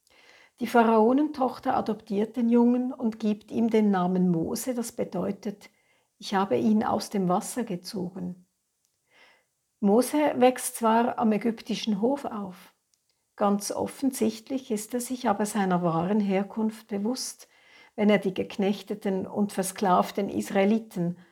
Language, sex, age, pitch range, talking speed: German, female, 60-79, 190-235 Hz, 125 wpm